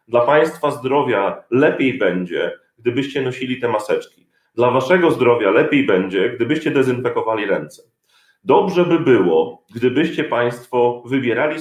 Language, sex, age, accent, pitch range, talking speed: Polish, male, 40-59, native, 130-175 Hz, 120 wpm